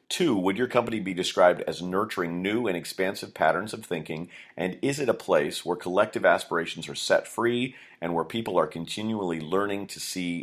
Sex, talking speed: male, 190 wpm